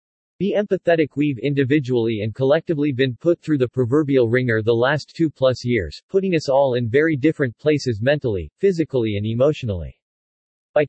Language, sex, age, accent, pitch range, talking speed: English, male, 40-59, American, 120-160 Hz, 160 wpm